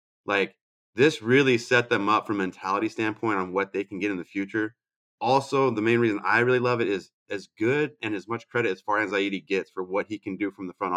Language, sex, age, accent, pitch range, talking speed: English, male, 30-49, American, 100-120 Hz, 250 wpm